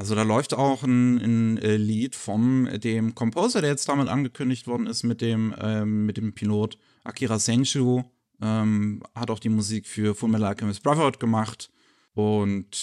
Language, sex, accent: German, male, German